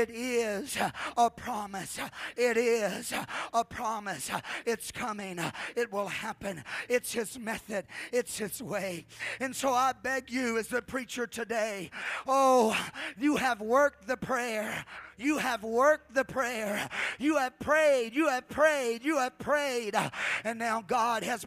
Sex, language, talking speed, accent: male, English, 145 wpm, American